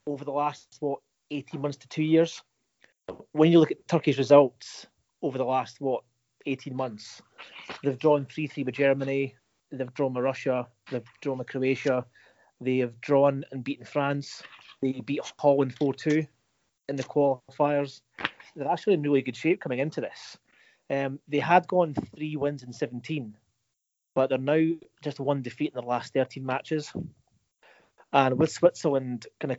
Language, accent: English, British